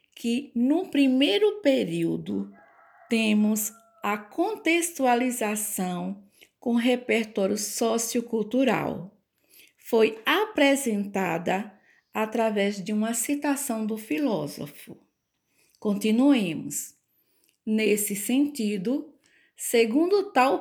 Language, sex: Portuguese, female